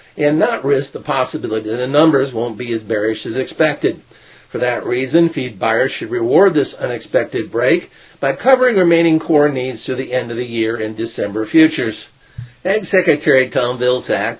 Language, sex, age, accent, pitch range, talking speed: English, male, 50-69, American, 110-160 Hz, 175 wpm